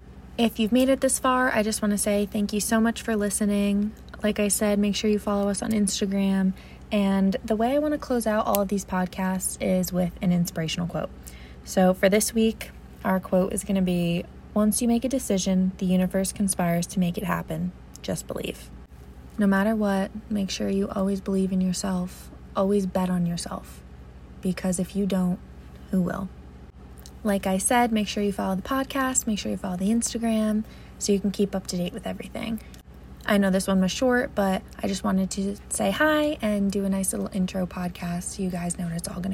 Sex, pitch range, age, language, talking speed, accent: female, 185-220 Hz, 20-39, English, 215 wpm, American